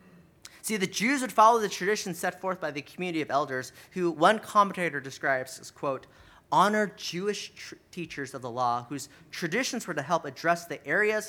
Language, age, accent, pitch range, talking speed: English, 30-49, American, 140-205 Hz, 185 wpm